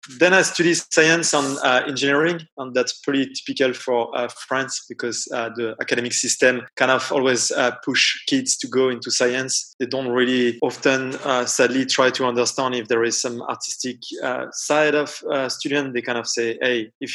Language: English